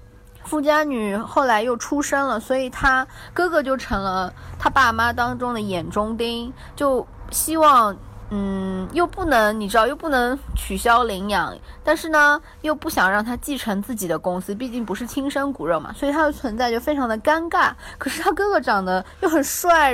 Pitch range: 205-280 Hz